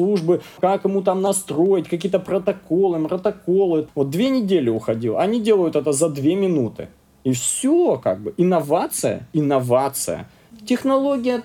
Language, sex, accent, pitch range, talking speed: Russian, male, native, 130-180 Hz, 125 wpm